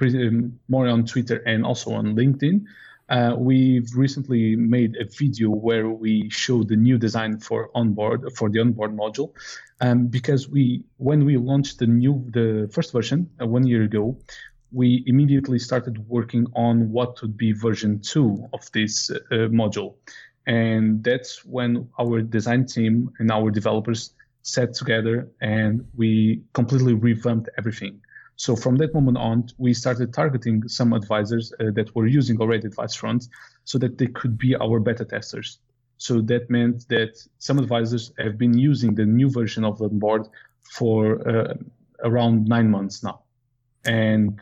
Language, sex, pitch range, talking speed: English, male, 110-125 Hz, 160 wpm